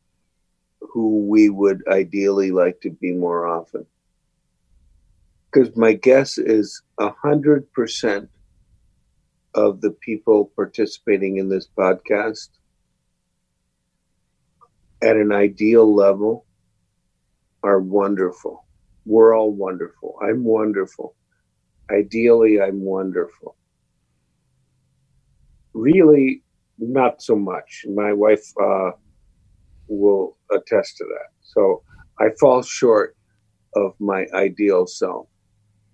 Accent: American